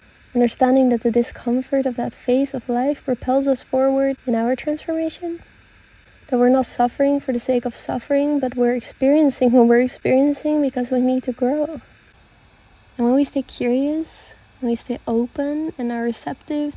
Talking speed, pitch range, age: 170 wpm, 240-270 Hz, 20-39